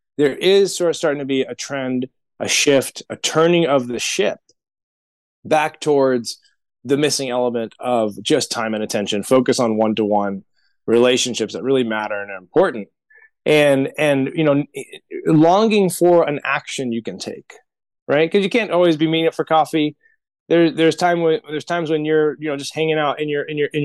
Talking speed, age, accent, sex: 190 wpm, 20-39, American, male